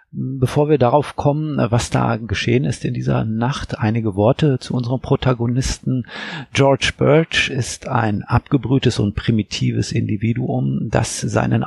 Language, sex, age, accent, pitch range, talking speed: German, male, 50-69, German, 110-135 Hz, 135 wpm